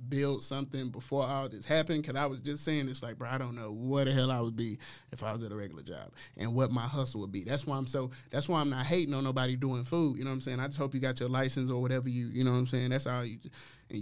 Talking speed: 315 wpm